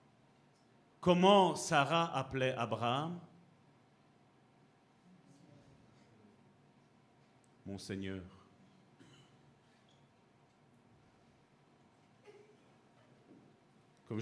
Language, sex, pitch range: French, male, 140-200 Hz